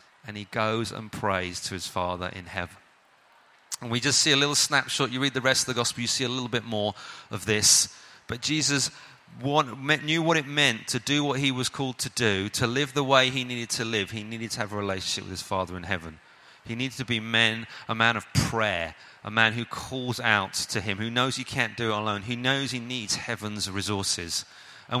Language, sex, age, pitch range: English, male, 30-49, 105-130 Hz